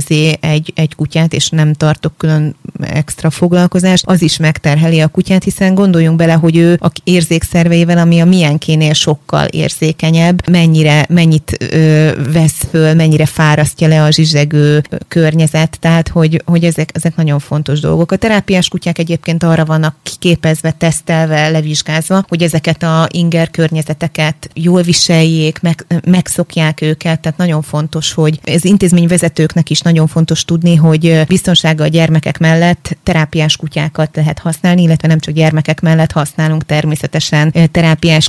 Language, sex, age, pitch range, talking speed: Hungarian, female, 30-49, 155-170 Hz, 150 wpm